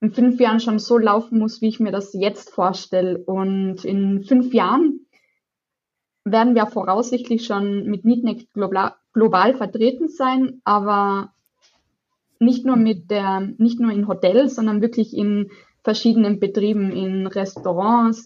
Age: 20-39